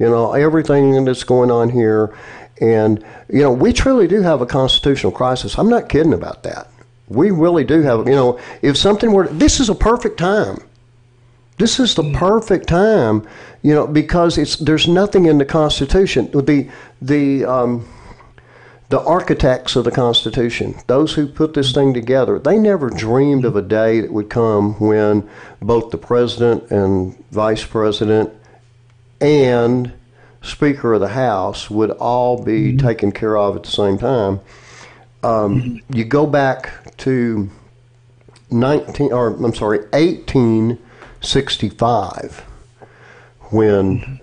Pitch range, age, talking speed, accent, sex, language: 110-140 Hz, 50-69, 150 wpm, American, male, English